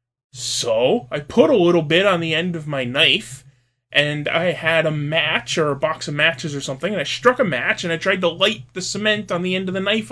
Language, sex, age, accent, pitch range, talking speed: English, male, 20-39, American, 140-195 Hz, 250 wpm